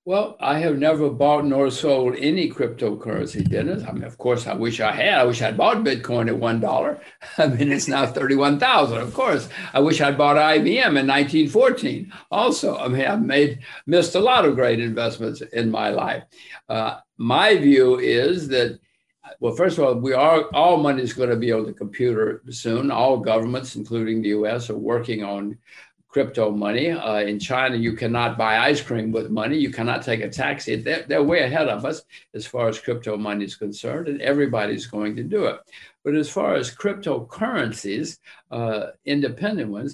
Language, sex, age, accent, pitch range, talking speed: English, male, 60-79, American, 115-150 Hz, 195 wpm